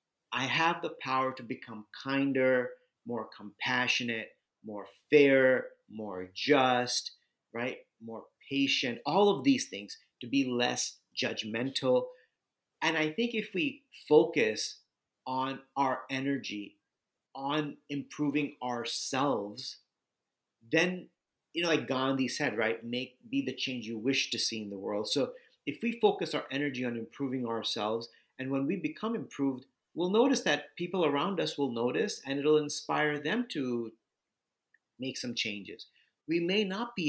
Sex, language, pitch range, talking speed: male, English, 125-165 Hz, 140 wpm